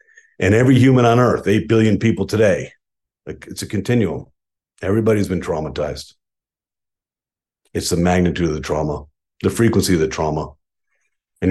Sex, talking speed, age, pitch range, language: male, 140 wpm, 50-69, 85-110 Hz, English